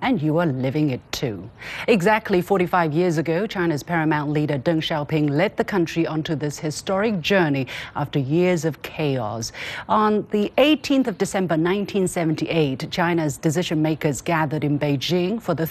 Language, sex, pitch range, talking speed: English, female, 140-200 Hz, 150 wpm